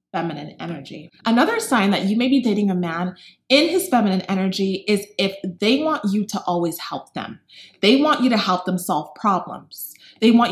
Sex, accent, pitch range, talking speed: female, American, 185-250 Hz, 195 wpm